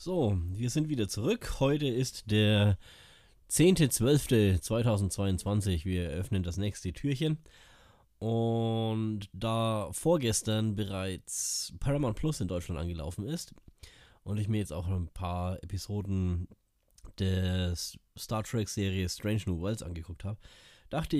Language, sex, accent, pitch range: German, male, German, 90-115 Hz